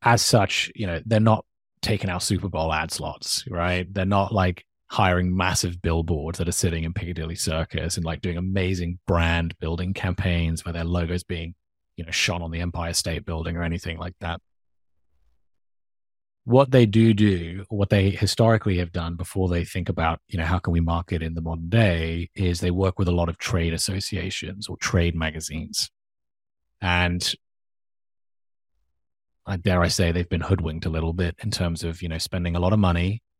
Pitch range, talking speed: 80-95 Hz, 185 wpm